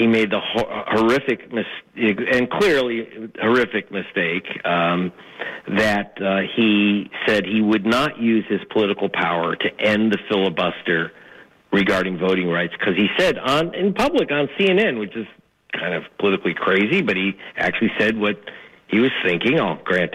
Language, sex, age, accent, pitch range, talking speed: English, male, 50-69, American, 100-135 Hz, 150 wpm